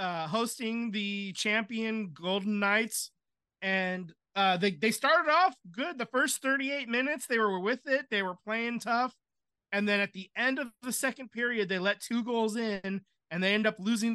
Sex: male